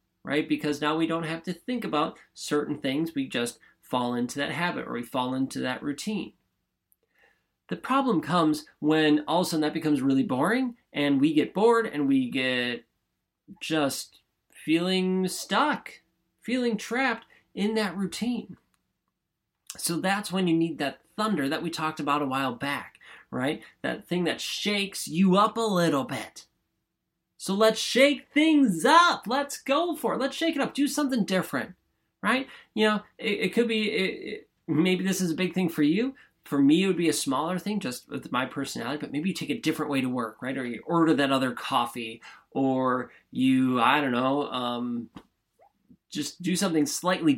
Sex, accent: male, American